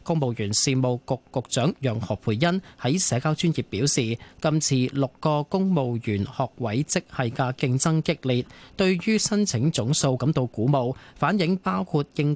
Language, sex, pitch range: Chinese, male, 120-170 Hz